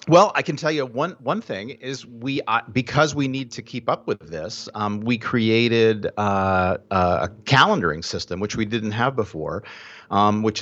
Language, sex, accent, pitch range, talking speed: English, male, American, 90-115 Hz, 185 wpm